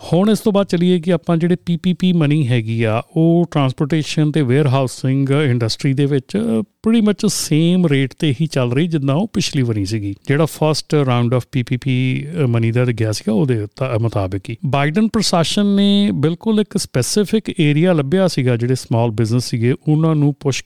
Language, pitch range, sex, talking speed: Punjabi, 125-170 Hz, male, 180 wpm